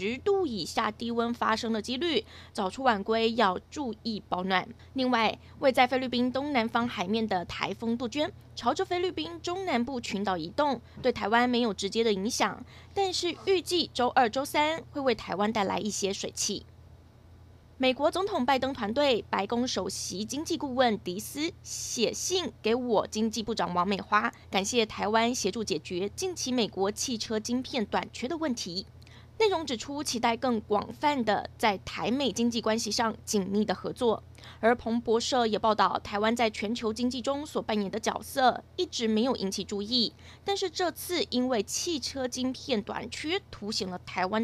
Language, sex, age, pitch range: Chinese, female, 20-39, 210-275 Hz